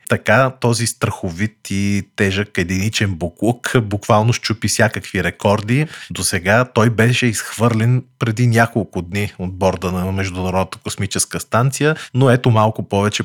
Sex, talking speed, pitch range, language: male, 130 wpm, 95-115 Hz, Bulgarian